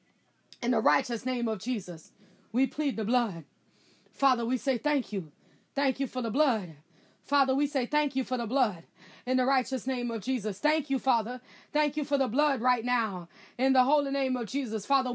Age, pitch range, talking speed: 20-39, 215-265 Hz, 200 wpm